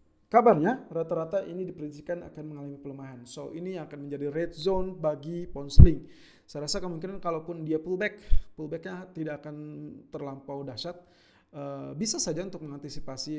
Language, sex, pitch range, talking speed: Indonesian, male, 145-180 Hz, 140 wpm